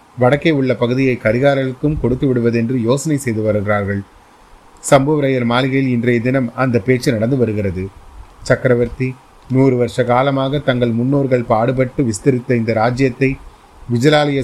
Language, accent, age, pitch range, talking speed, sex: Tamil, native, 30-49, 120-140 Hz, 115 wpm, male